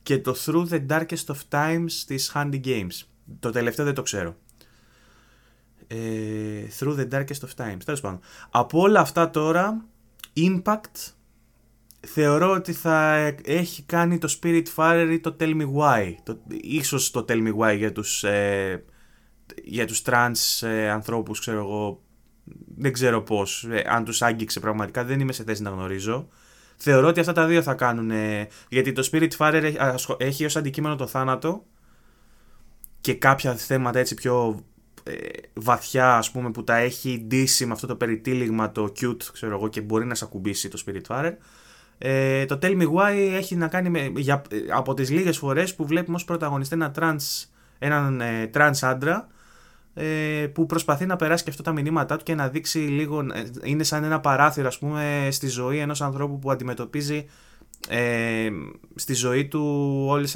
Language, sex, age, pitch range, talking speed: Greek, male, 20-39, 115-150 Hz, 165 wpm